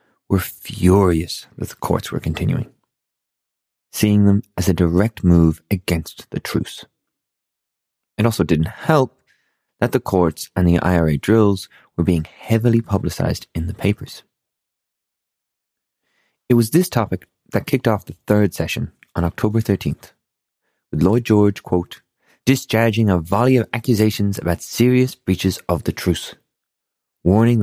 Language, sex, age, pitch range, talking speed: English, male, 30-49, 90-120 Hz, 135 wpm